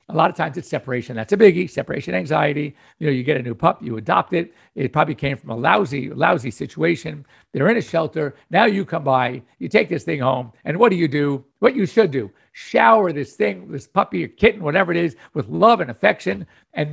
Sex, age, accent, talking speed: male, 60-79, American, 235 wpm